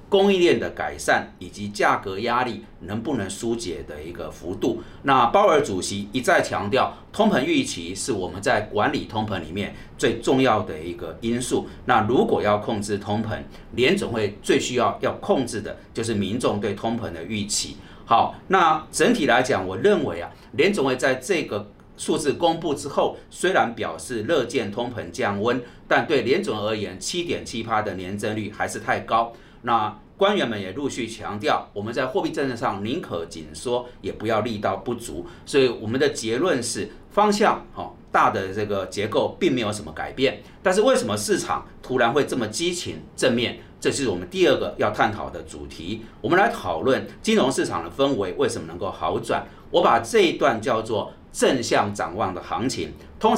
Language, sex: Chinese, male